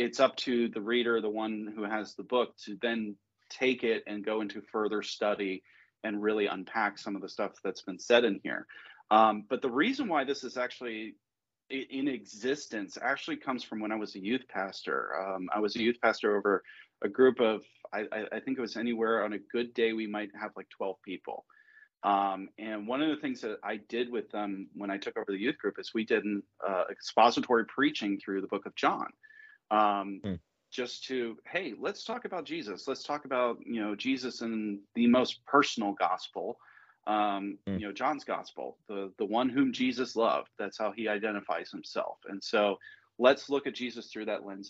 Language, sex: English, male